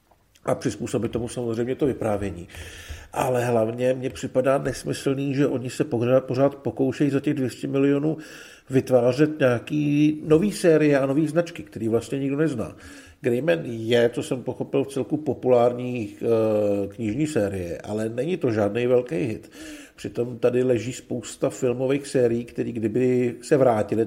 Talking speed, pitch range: 140 wpm, 110-130 Hz